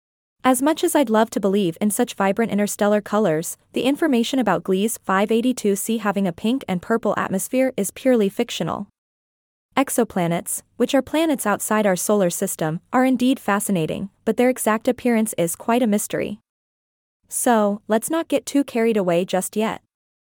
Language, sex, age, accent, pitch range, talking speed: English, female, 20-39, American, 195-255 Hz, 160 wpm